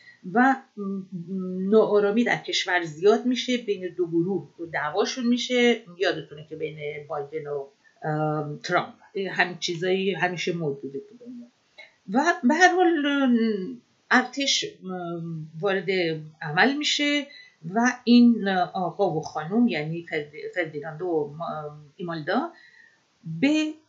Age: 50-69